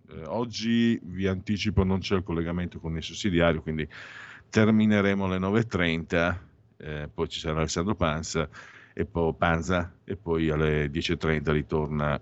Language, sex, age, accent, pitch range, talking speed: Italian, male, 50-69, native, 80-115 Hz, 135 wpm